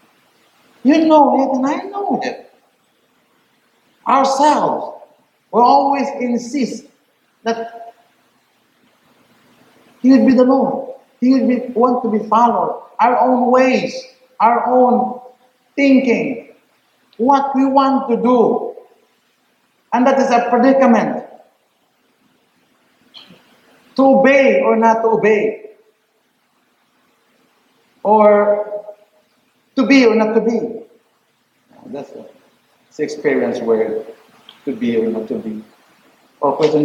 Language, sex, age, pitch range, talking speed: English, male, 60-79, 190-265 Hz, 105 wpm